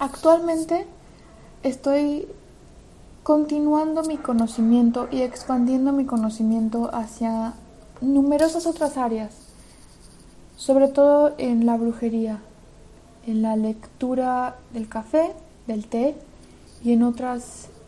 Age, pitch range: 20-39, 215-260 Hz